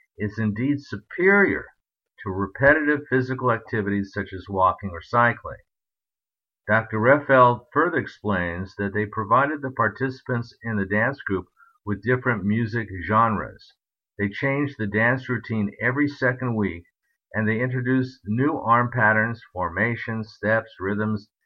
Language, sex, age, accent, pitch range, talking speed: English, male, 50-69, American, 100-125 Hz, 130 wpm